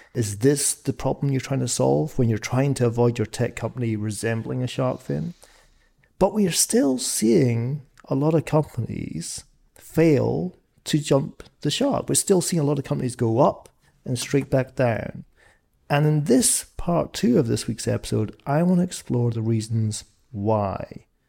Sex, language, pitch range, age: male, English, 115-145 Hz, 40-59